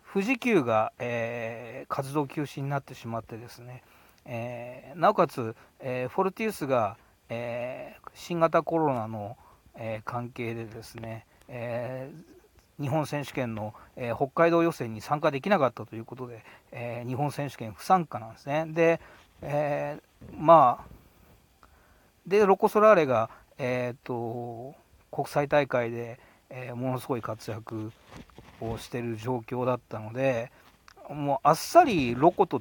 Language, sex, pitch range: Japanese, male, 115-145 Hz